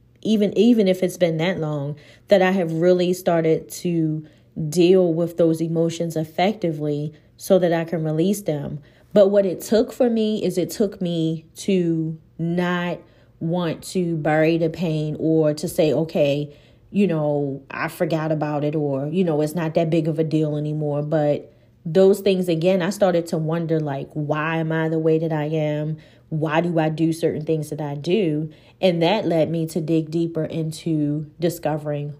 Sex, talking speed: female, 180 wpm